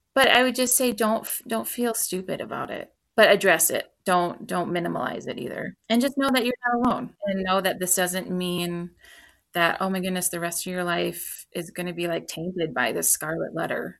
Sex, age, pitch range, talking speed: female, 20-39, 175-215 Hz, 220 wpm